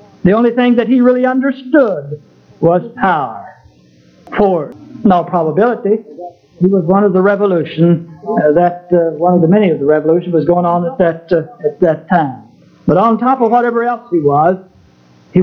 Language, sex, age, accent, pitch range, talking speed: English, male, 60-79, American, 160-205 Hz, 180 wpm